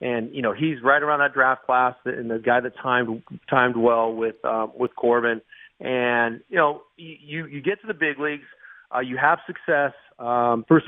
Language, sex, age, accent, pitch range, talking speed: English, male, 40-59, American, 120-140 Hz, 200 wpm